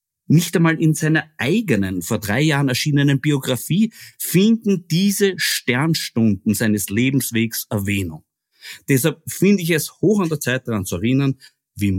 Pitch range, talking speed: 105-150 Hz, 140 wpm